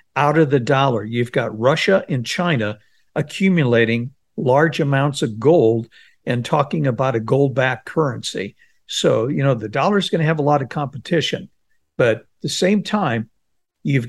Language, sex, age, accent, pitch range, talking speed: English, male, 60-79, American, 125-165 Hz, 165 wpm